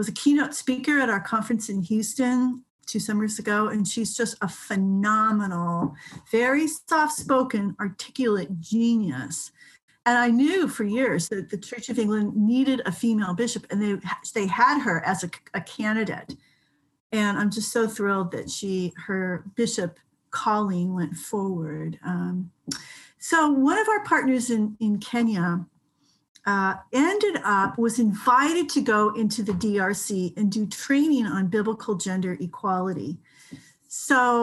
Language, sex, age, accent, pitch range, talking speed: English, female, 40-59, American, 195-245 Hz, 145 wpm